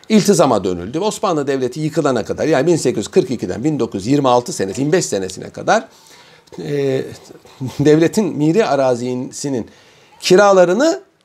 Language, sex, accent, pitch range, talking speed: Turkish, male, native, 135-220 Hz, 95 wpm